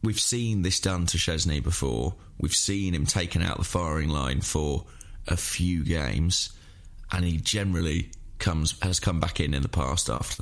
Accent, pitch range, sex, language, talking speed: British, 85-100 Hz, male, English, 180 wpm